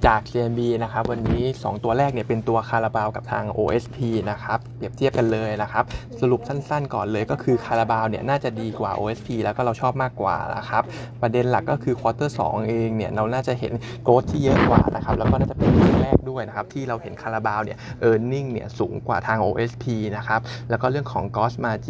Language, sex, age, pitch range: Thai, male, 20-39, 110-125 Hz